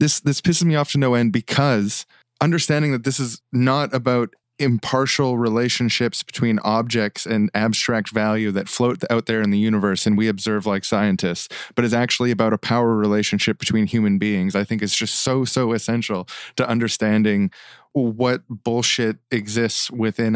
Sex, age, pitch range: male, 20-39, 110-130 Hz